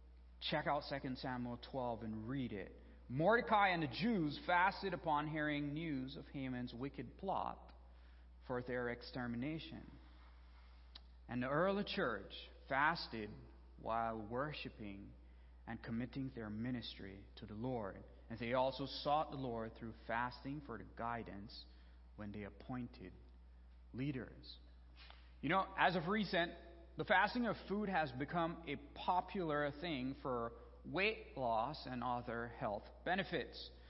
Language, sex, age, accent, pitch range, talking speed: English, male, 40-59, American, 105-155 Hz, 130 wpm